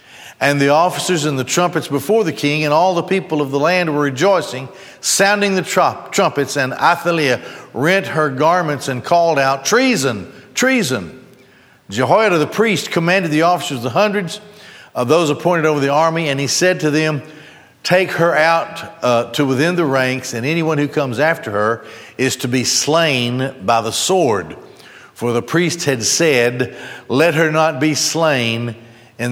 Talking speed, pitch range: 170 wpm, 125-165 Hz